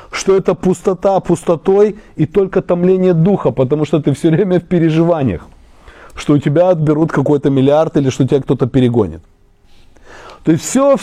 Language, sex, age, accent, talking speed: Russian, male, 30-49, native, 165 wpm